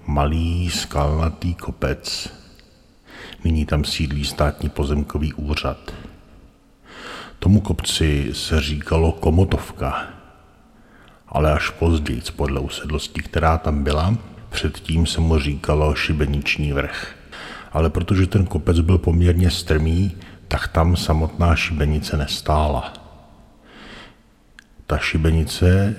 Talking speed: 95 wpm